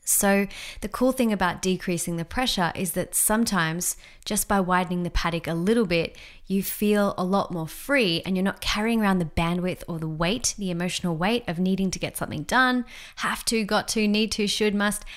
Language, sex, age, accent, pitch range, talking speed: English, female, 20-39, Australian, 175-225 Hz, 205 wpm